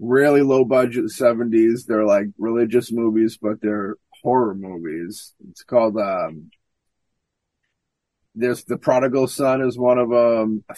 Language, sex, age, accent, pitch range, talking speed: English, male, 30-49, American, 105-125 Hz, 135 wpm